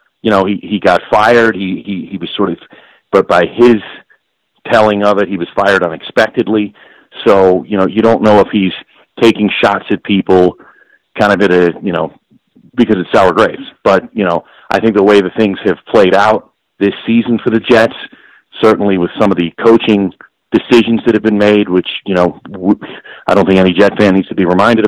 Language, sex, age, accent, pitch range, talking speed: English, male, 40-59, American, 95-110 Hz, 205 wpm